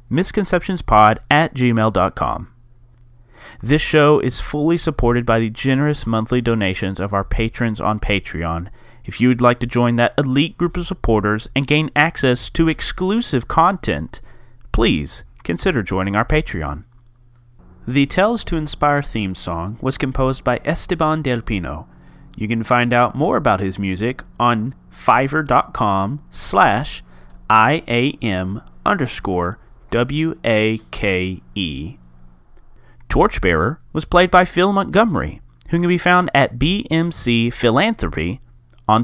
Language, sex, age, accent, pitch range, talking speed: English, male, 30-49, American, 105-145 Hz, 120 wpm